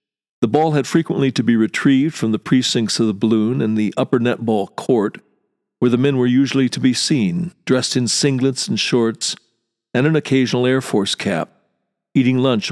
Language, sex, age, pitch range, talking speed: English, male, 50-69, 115-140 Hz, 185 wpm